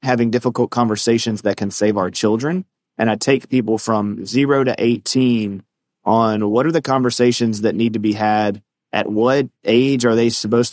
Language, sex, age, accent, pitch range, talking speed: English, male, 30-49, American, 110-130 Hz, 180 wpm